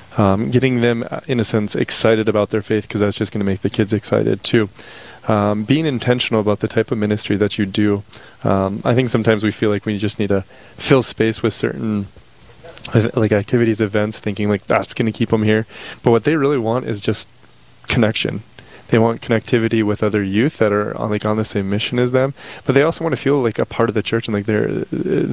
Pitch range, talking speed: 105-120 Hz, 225 wpm